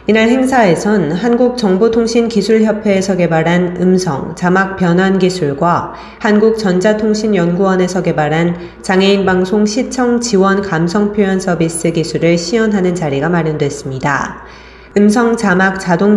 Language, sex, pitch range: Korean, female, 170-210 Hz